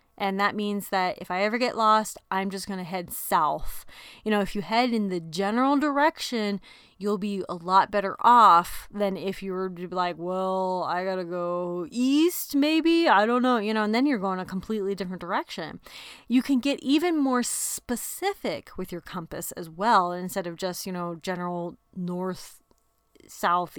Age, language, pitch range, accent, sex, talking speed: 30-49, English, 185-235 Hz, American, female, 190 wpm